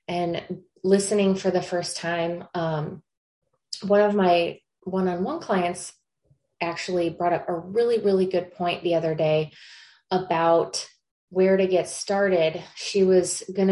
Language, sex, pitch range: English, female, 165-195 Hz